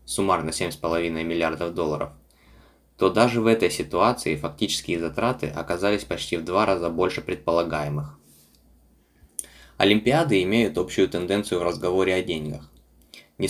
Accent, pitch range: native, 80-100 Hz